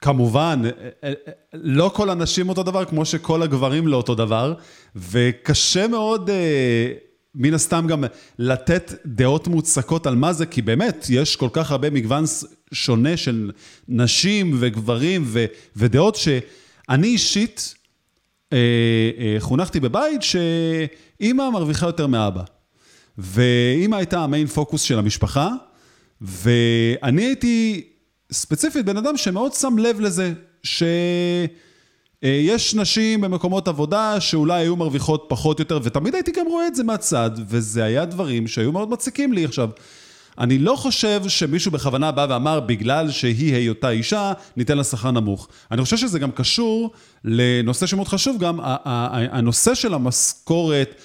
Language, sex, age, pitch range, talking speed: Hebrew, male, 30-49, 125-185 Hz, 130 wpm